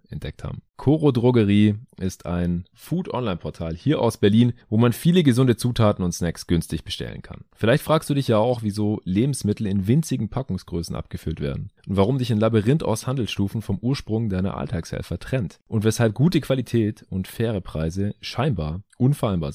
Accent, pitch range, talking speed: German, 95-120 Hz, 165 wpm